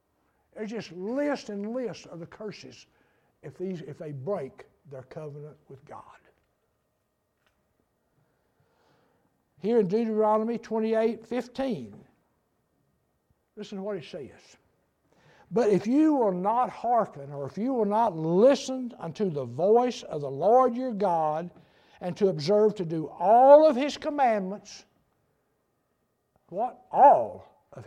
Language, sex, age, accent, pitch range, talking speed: English, male, 60-79, American, 155-230 Hz, 125 wpm